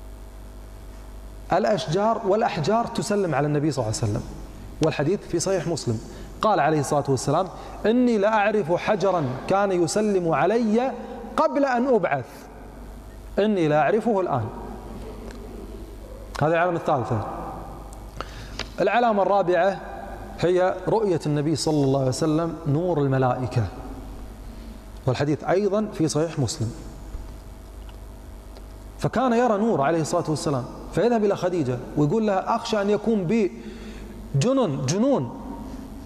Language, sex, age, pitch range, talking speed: Arabic, male, 30-49, 115-190 Hz, 110 wpm